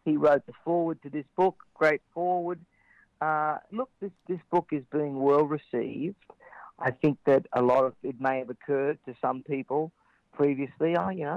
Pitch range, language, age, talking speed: 125-155 Hz, English, 40-59, 180 wpm